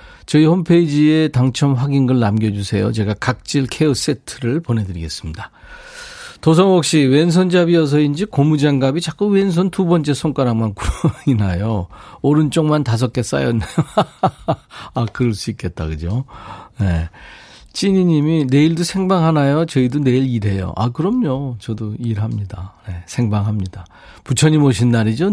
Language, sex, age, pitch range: Korean, male, 40-59, 105-150 Hz